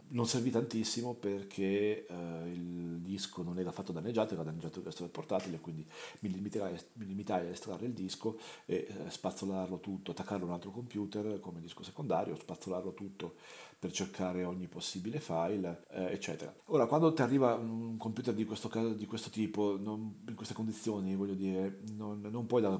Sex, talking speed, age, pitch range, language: male, 175 wpm, 40-59, 90-110 Hz, Italian